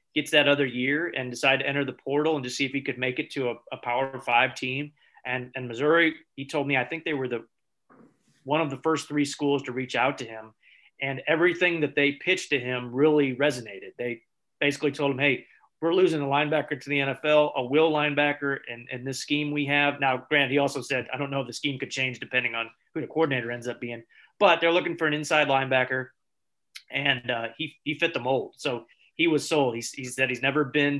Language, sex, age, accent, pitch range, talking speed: English, male, 30-49, American, 130-150 Hz, 230 wpm